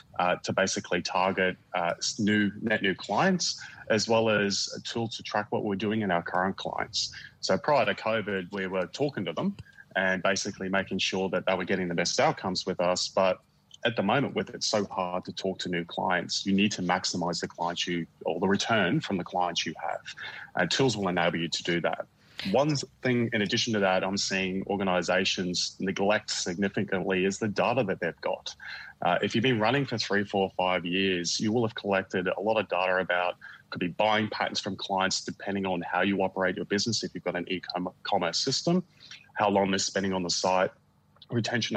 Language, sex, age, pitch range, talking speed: English, male, 30-49, 90-105 Hz, 210 wpm